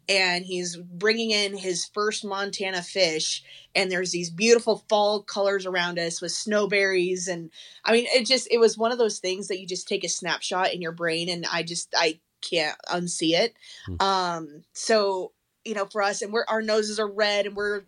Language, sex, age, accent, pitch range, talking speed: English, female, 20-39, American, 175-205 Hz, 200 wpm